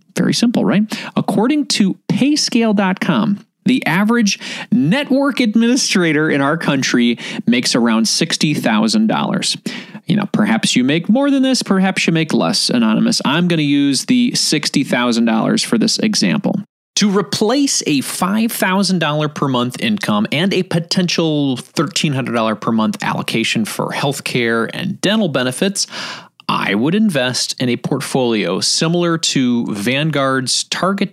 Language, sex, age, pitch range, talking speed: English, male, 30-49, 140-220 Hz, 130 wpm